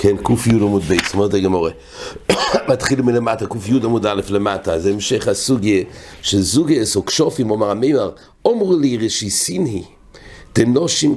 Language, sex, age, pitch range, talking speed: English, male, 60-79, 100-120 Hz, 150 wpm